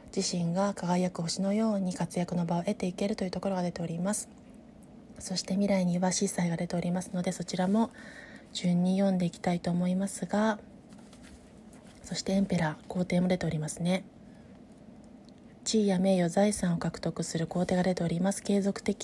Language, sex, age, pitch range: Japanese, female, 20-39, 180-215 Hz